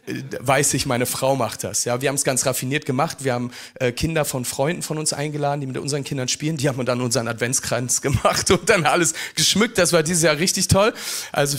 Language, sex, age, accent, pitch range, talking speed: German, male, 40-59, German, 135-175 Hz, 230 wpm